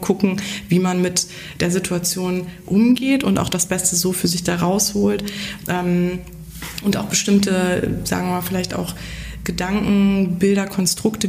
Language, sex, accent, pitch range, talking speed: German, female, German, 185-210 Hz, 140 wpm